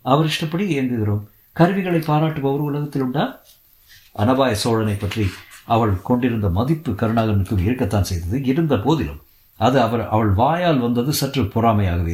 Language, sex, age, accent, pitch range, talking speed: Tamil, male, 50-69, native, 100-130 Hz, 125 wpm